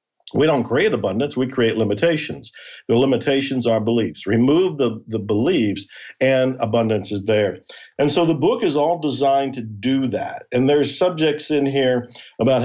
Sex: male